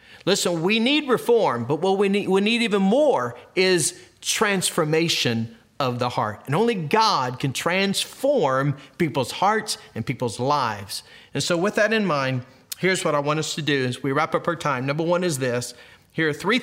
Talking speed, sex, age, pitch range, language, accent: 190 wpm, male, 40-59, 130-190 Hz, English, American